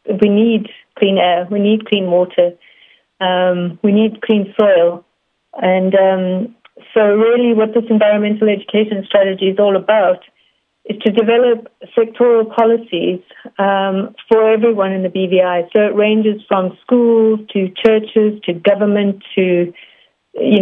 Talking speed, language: 135 wpm, English